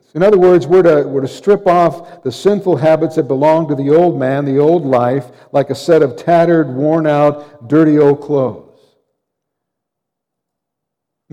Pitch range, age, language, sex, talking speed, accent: 150-180 Hz, 60-79, English, male, 165 wpm, American